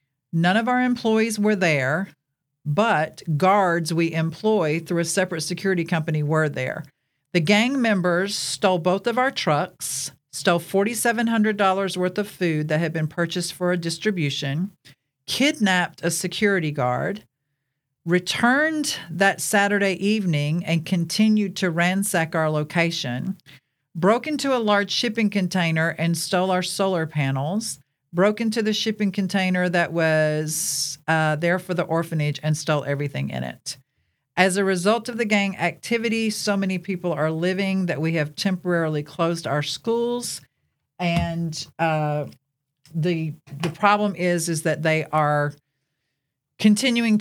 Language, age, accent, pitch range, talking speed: English, 50-69, American, 150-195 Hz, 140 wpm